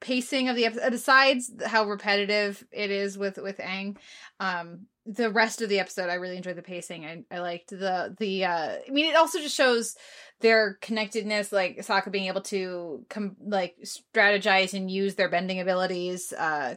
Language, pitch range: English, 180-230 Hz